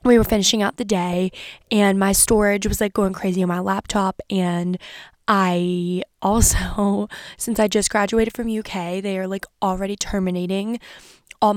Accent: American